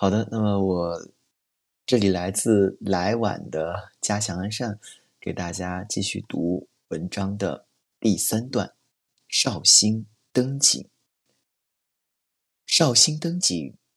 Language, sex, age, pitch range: Chinese, male, 30-49, 95-125 Hz